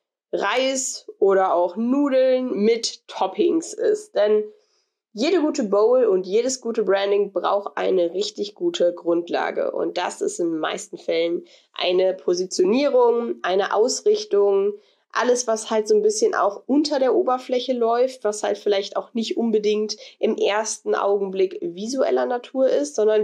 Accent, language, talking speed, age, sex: German, German, 140 wpm, 20-39, female